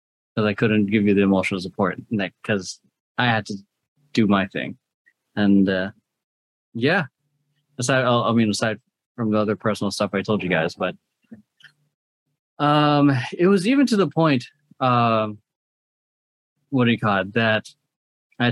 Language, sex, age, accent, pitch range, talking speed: English, male, 20-39, American, 110-145 Hz, 145 wpm